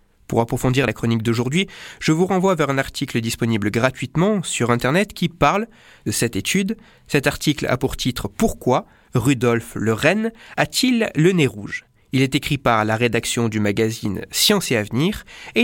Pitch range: 120-200 Hz